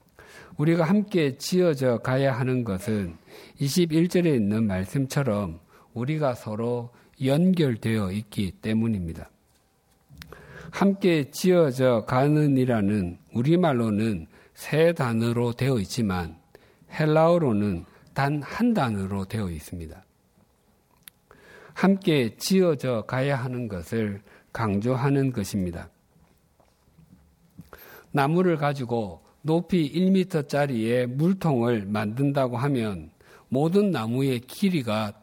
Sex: male